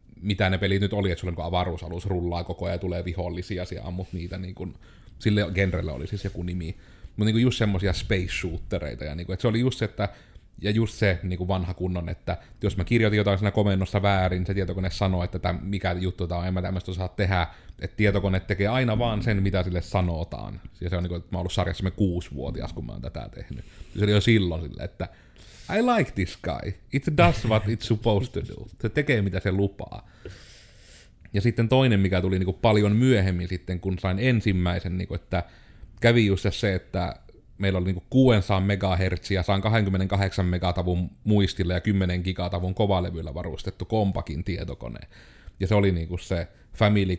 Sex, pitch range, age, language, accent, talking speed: male, 90-105 Hz, 30-49, Finnish, native, 195 wpm